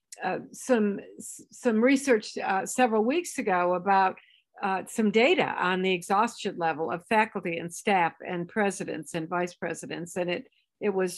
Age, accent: 60-79, American